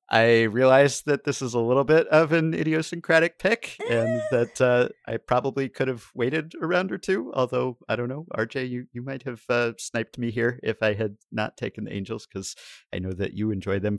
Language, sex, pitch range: English, male, 100-125 Hz